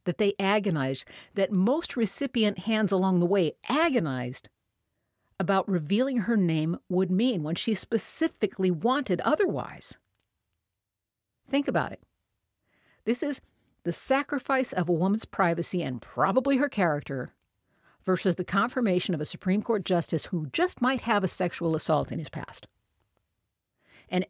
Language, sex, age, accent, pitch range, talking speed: English, female, 50-69, American, 135-225 Hz, 140 wpm